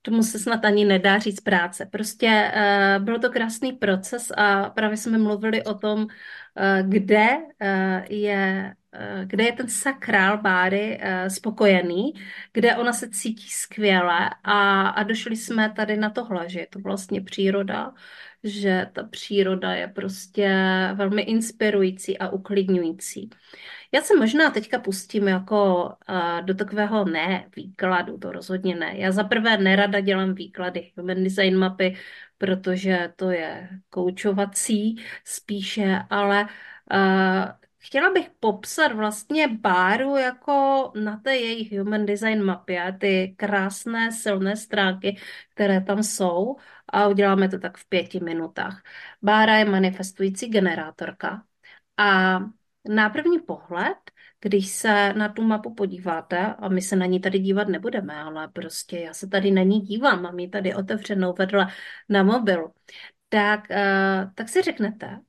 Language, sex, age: Czech, female, 30-49